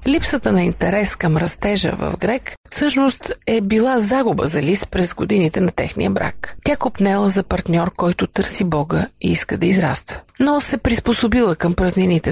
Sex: female